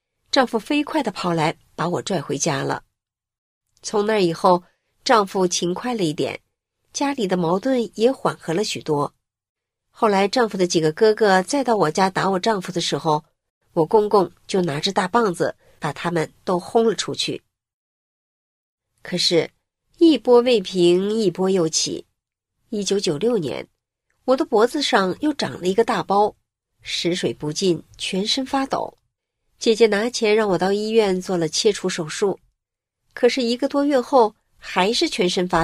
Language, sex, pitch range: Chinese, female, 170-235 Hz